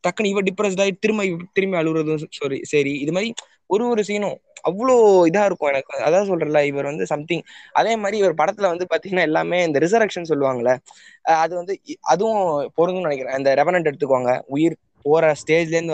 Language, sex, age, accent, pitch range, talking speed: Tamil, male, 20-39, native, 140-180 Hz, 160 wpm